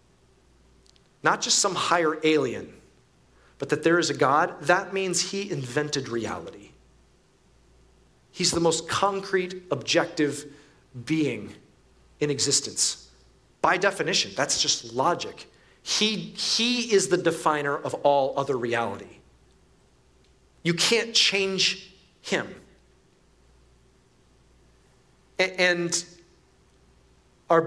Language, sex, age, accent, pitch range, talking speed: English, male, 40-59, American, 150-210 Hz, 95 wpm